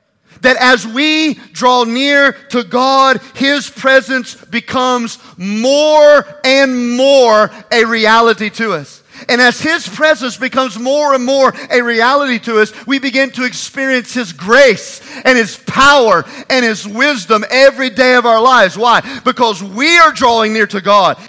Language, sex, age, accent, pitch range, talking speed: English, male, 40-59, American, 195-250 Hz, 150 wpm